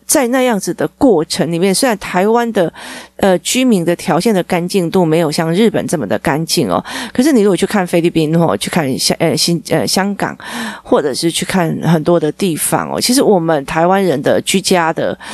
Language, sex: Chinese, female